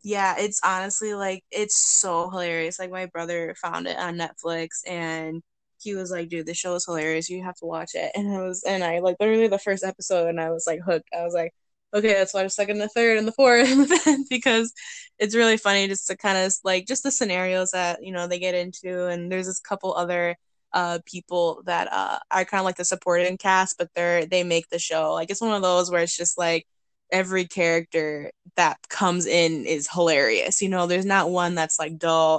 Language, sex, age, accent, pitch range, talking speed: English, female, 10-29, American, 170-200 Hz, 220 wpm